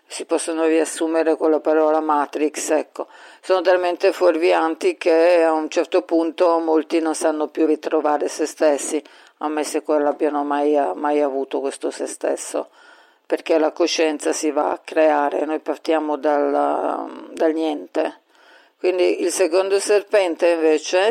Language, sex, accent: Italian, female, native